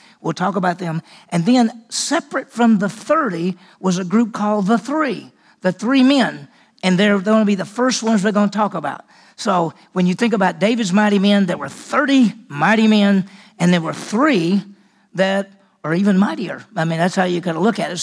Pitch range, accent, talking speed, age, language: 185-230 Hz, American, 215 wpm, 50-69, English